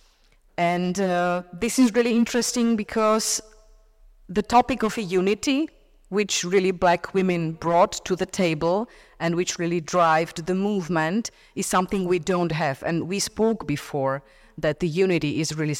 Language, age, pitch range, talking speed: Slovak, 30-49, 155-200 Hz, 150 wpm